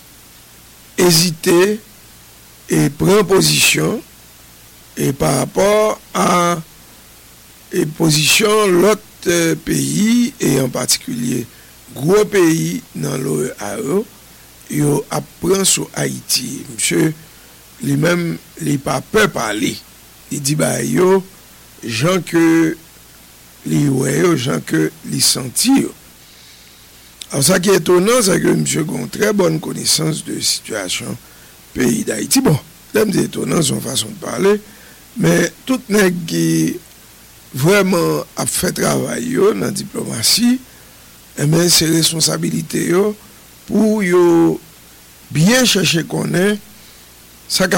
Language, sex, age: English, male, 60-79